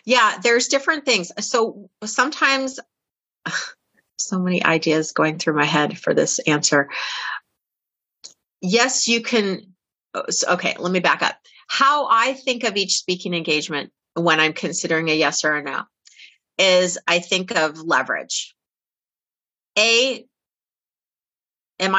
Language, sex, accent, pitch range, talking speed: English, female, American, 170-230 Hz, 125 wpm